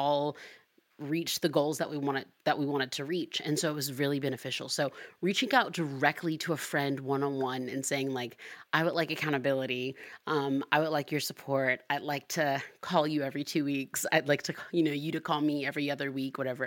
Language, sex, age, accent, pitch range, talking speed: English, female, 30-49, American, 140-180 Hz, 215 wpm